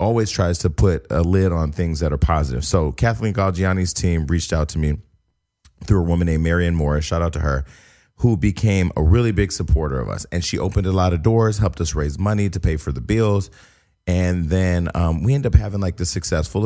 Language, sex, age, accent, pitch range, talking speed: English, male, 30-49, American, 80-95 Hz, 225 wpm